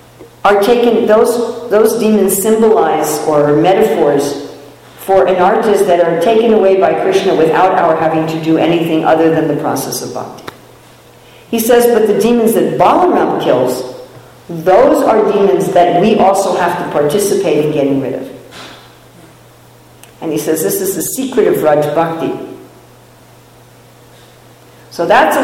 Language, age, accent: English, 50-69, American